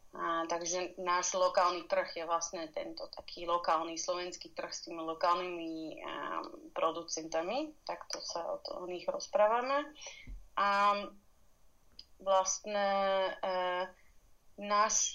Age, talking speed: 30-49, 105 wpm